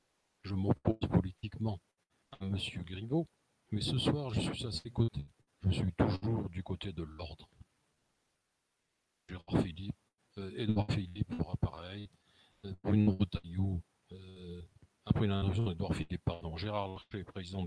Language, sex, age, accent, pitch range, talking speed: French, male, 50-69, French, 90-115 Hz, 135 wpm